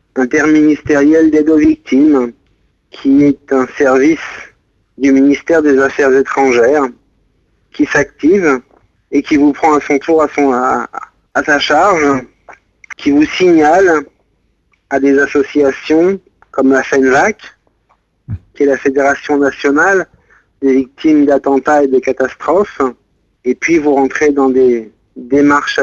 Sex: male